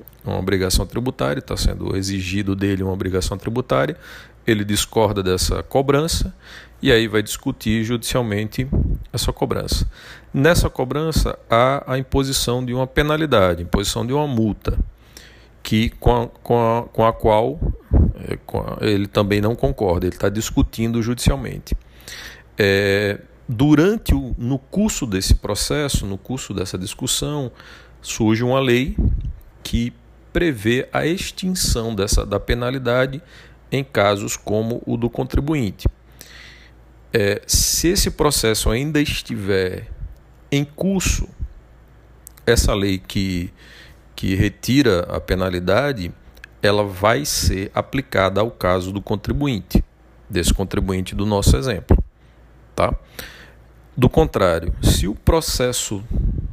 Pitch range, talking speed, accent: 95-125 Hz, 110 wpm, Brazilian